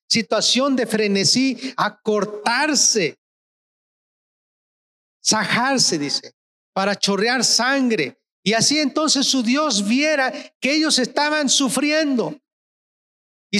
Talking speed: 90 wpm